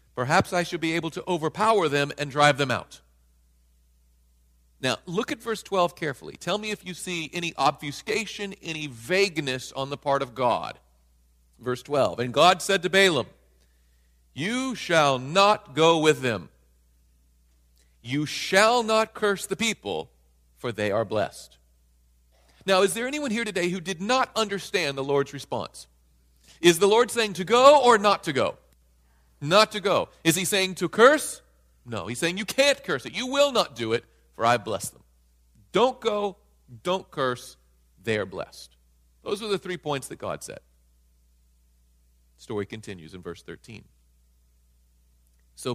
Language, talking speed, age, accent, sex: English, 160 wpm, 40-59, American, male